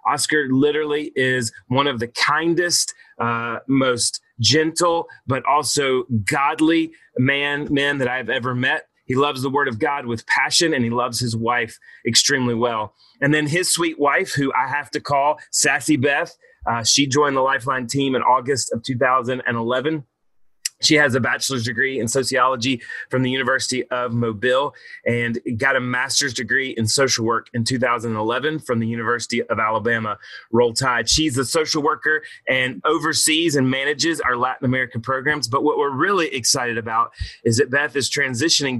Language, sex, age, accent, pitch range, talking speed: English, male, 30-49, American, 120-150 Hz, 165 wpm